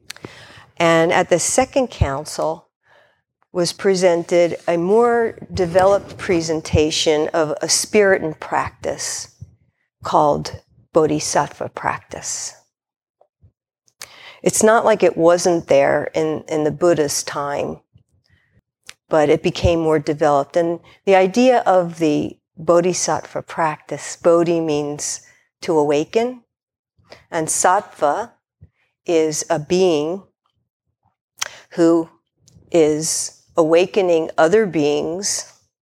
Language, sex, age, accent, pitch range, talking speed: English, female, 50-69, American, 155-185 Hz, 95 wpm